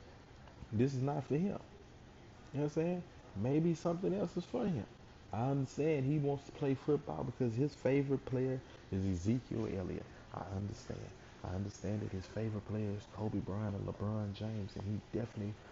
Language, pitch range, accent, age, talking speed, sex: English, 100-130 Hz, American, 20-39, 180 wpm, male